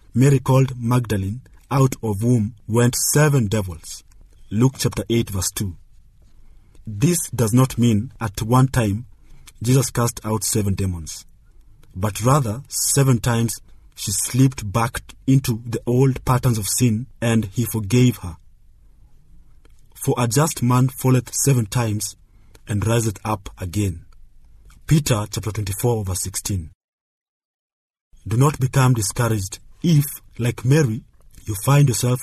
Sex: male